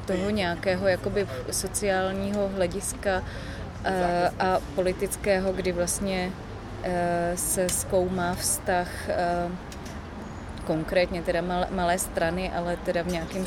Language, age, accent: Czech, 30-49, native